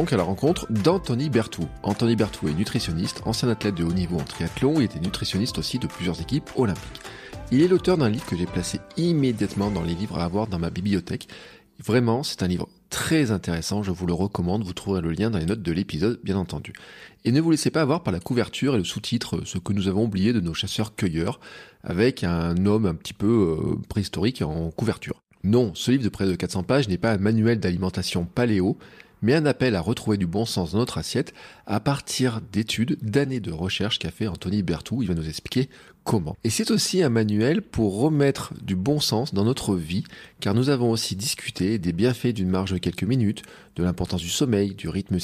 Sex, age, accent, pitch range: male, 30-49, French, 90-120 Hz